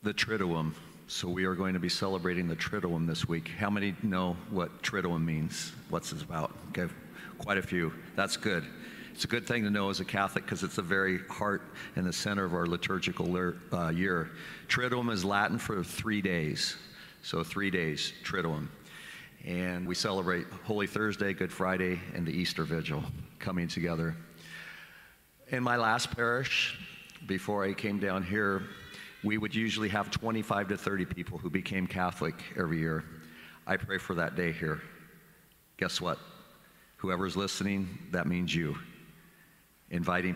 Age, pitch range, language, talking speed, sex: 50-69, 85-100 Hz, English, 160 wpm, male